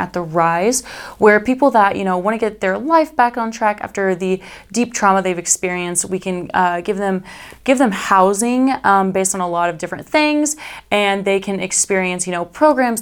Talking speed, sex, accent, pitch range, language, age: 205 wpm, female, American, 175-210 Hz, English, 20-39